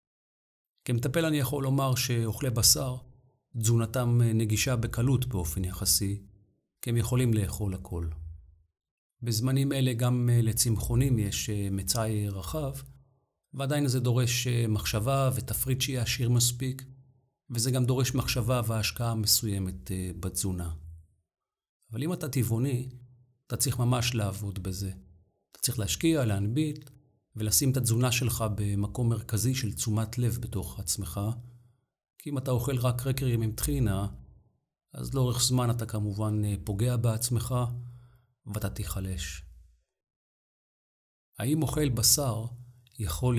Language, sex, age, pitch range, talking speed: Hebrew, male, 40-59, 100-130 Hz, 120 wpm